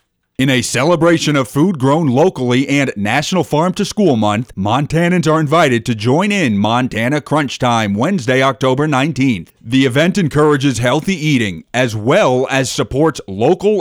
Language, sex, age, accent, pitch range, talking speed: English, male, 30-49, American, 120-155 Hz, 150 wpm